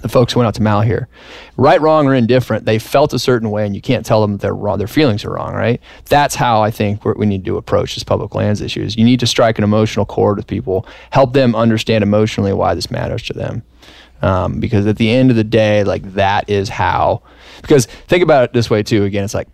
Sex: male